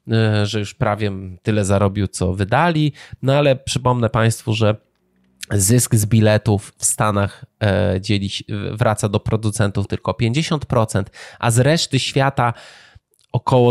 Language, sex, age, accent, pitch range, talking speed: Polish, male, 20-39, native, 105-130 Hz, 120 wpm